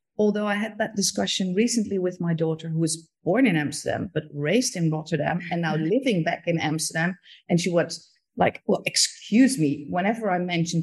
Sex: female